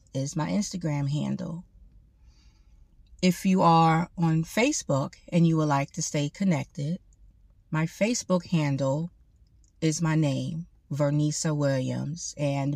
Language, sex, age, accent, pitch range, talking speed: English, female, 30-49, American, 130-165 Hz, 120 wpm